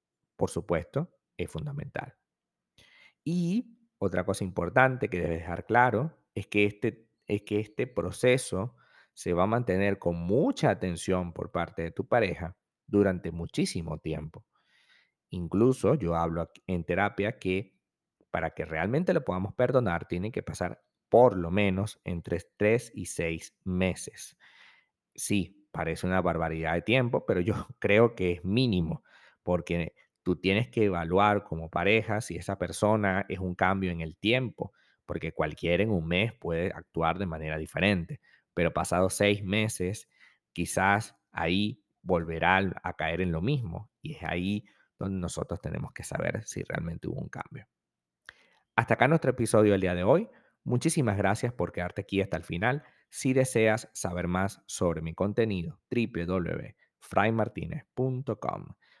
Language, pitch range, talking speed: Spanish, 85-110 Hz, 145 wpm